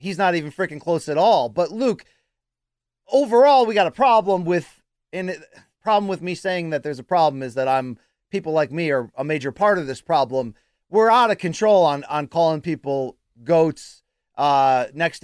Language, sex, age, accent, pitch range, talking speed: English, male, 30-49, American, 165-245 Hz, 190 wpm